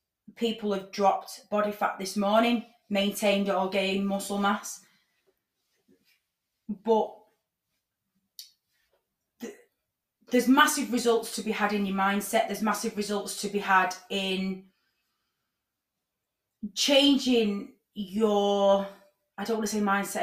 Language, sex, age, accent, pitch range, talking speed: English, female, 30-49, British, 190-225 Hz, 115 wpm